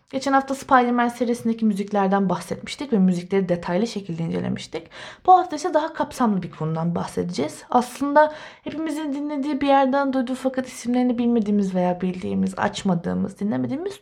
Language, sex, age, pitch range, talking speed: Turkish, female, 20-39, 215-305 Hz, 135 wpm